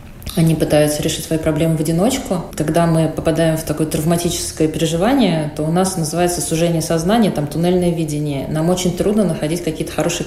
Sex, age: female, 30-49